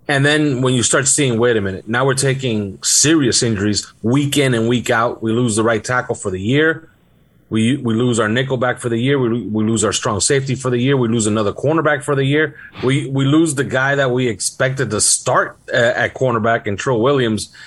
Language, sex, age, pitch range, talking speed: English, male, 30-49, 115-145 Hz, 230 wpm